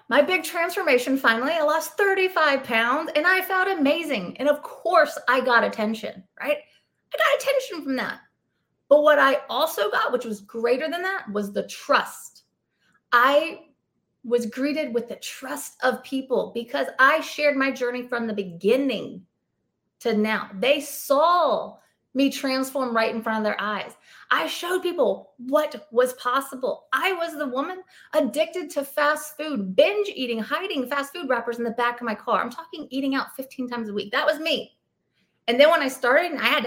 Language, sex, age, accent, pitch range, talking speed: English, female, 30-49, American, 240-310 Hz, 180 wpm